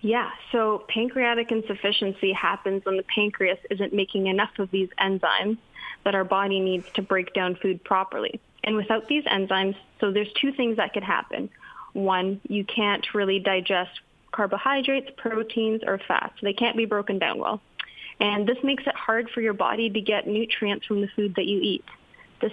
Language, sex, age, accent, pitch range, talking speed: English, female, 20-39, American, 195-225 Hz, 180 wpm